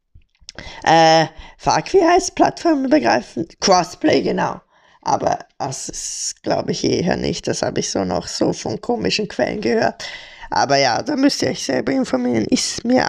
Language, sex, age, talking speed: German, female, 20-39, 160 wpm